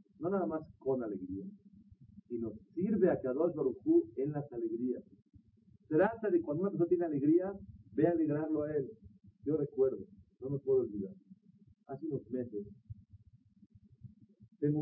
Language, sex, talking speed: Spanish, male, 140 wpm